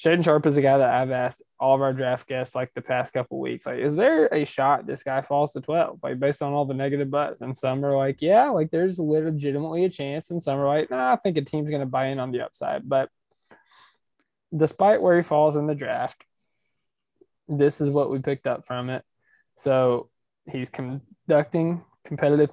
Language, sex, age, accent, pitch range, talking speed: English, male, 20-39, American, 130-155 Hz, 215 wpm